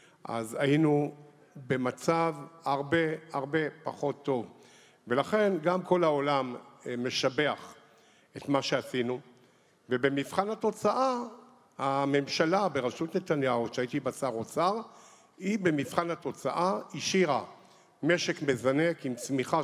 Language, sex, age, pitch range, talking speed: Hebrew, male, 50-69, 130-175 Hz, 100 wpm